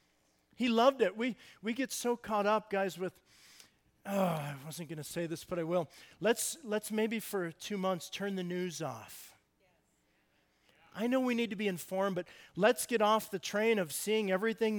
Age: 40-59